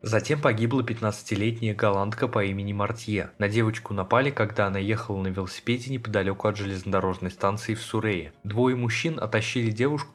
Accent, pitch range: native, 100-120 Hz